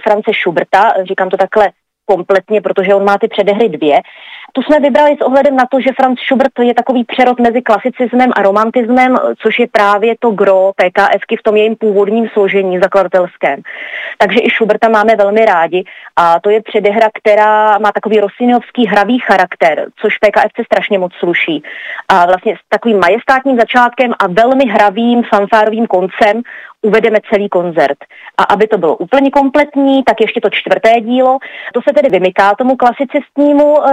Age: 30-49